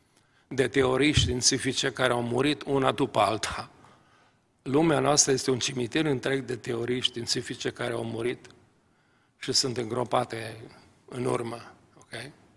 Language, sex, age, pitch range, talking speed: Romanian, male, 40-59, 130-155 Hz, 130 wpm